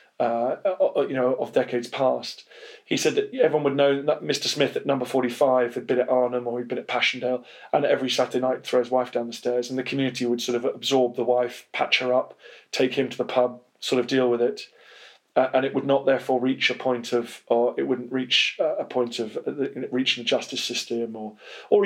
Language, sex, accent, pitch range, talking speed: English, male, British, 125-150 Hz, 230 wpm